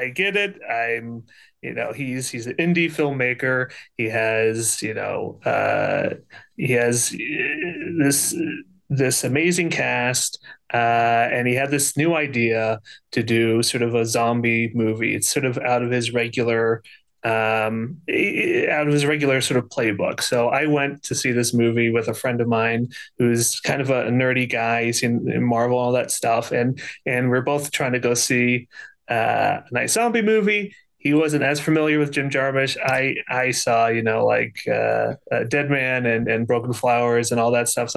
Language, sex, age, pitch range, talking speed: English, male, 30-49, 120-150 Hz, 180 wpm